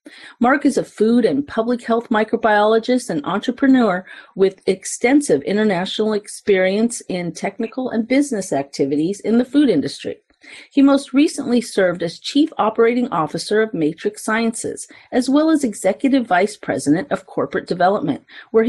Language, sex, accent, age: English, female, American, 40-59